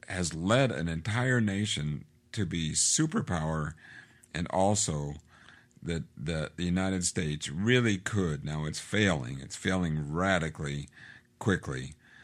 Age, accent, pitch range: 50-69, American, 80-105 Hz